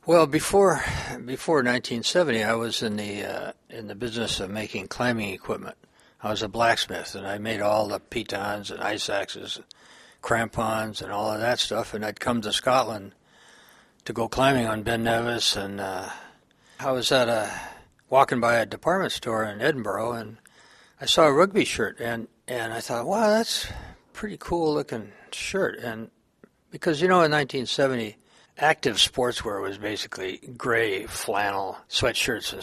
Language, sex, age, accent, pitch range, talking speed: English, male, 60-79, American, 110-130 Hz, 170 wpm